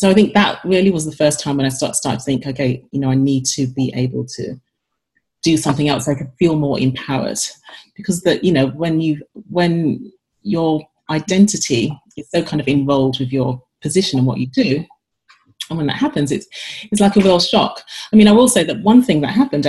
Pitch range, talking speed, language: 135-175 Hz, 225 wpm, English